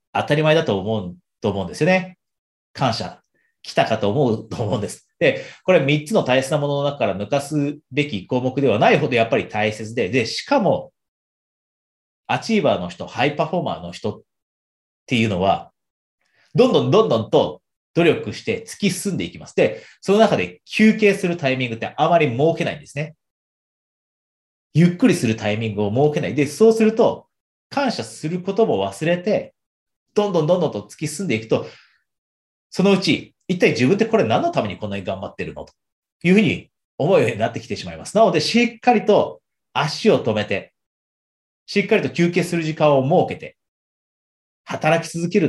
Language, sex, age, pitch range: Japanese, male, 30-49, 115-190 Hz